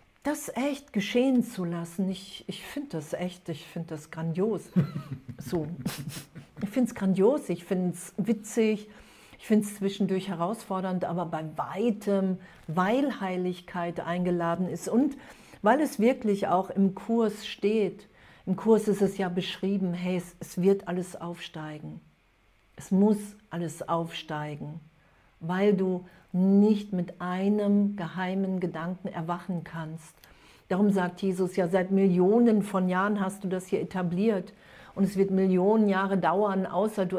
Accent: German